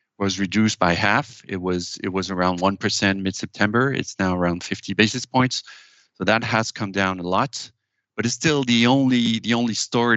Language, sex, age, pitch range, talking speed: English, male, 40-59, 95-115 Hz, 200 wpm